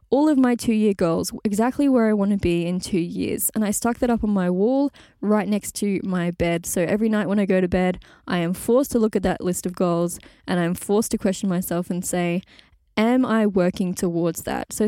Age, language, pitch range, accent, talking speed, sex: 10-29, English, 180-230 Hz, Australian, 240 wpm, female